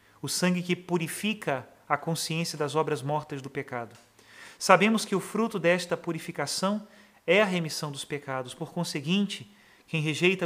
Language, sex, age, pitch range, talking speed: Portuguese, male, 40-59, 155-190 Hz, 150 wpm